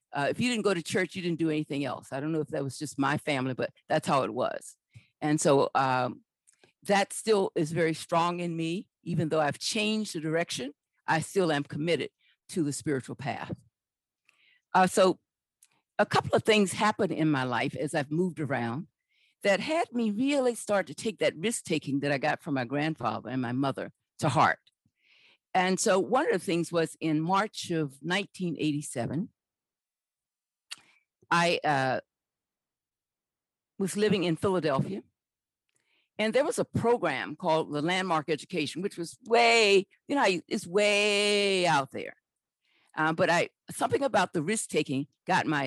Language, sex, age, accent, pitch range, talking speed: English, female, 50-69, American, 145-195 Hz, 170 wpm